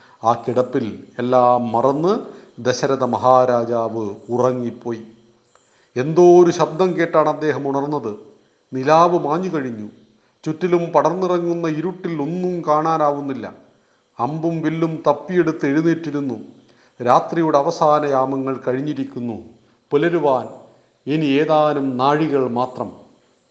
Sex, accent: male, native